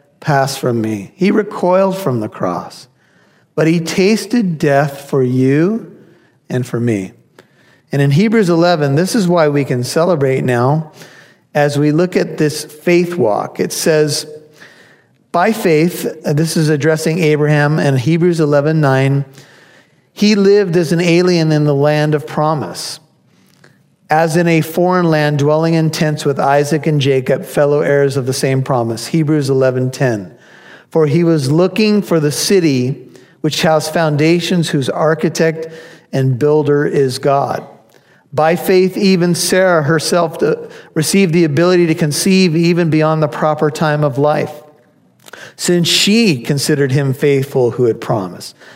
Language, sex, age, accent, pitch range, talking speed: English, male, 50-69, American, 140-175 Hz, 145 wpm